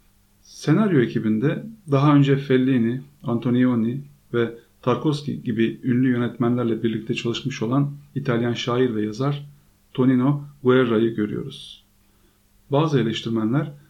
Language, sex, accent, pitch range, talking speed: Turkish, male, native, 110-135 Hz, 100 wpm